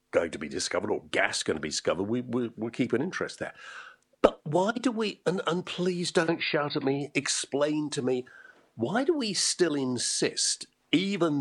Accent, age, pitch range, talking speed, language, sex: British, 50-69, 135-220 Hz, 195 wpm, English, male